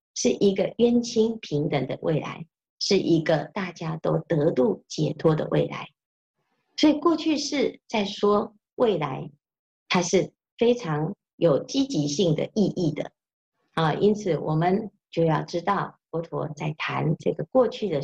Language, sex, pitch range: Chinese, female, 155-210 Hz